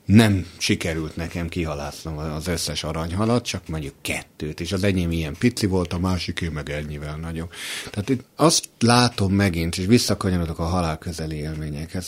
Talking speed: 160 wpm